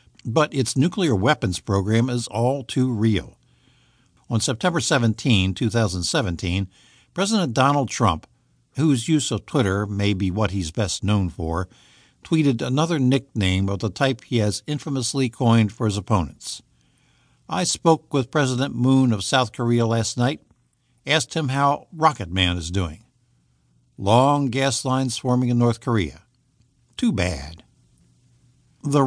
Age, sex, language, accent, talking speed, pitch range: 60-79, male, English, American, 140 wpm, 105-140 Hz